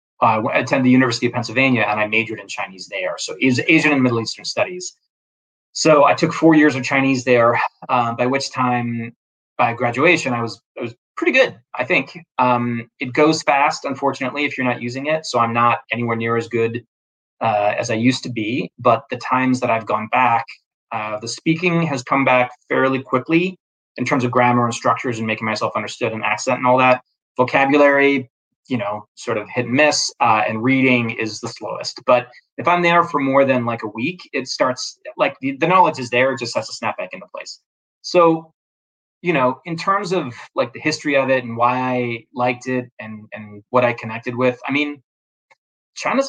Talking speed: 205 wpm